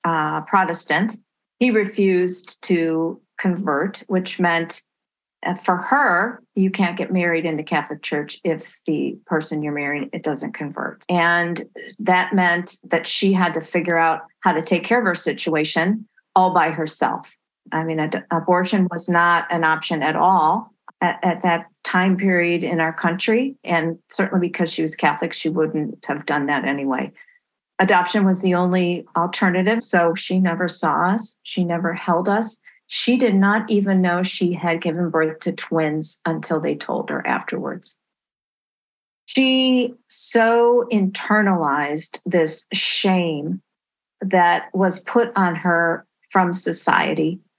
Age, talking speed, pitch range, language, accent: 40-59, 145 wpm, 165-200 Hz, English, American